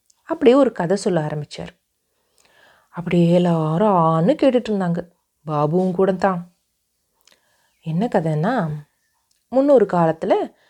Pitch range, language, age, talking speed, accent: 165-215 Hz, Tamil, 30-49, 90 wpm, native